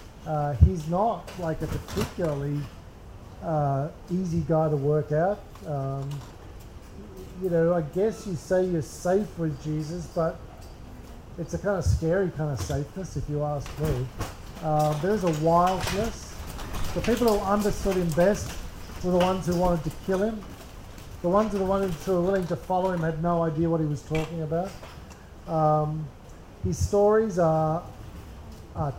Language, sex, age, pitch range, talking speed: English, male, 50-69, 140-180 Hz, 155 wpm